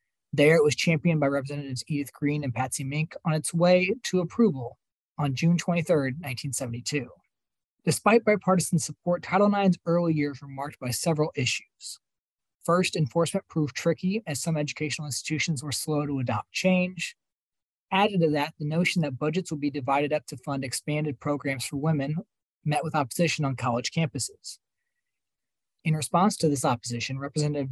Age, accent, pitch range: 20-39, American, 140-170 Hz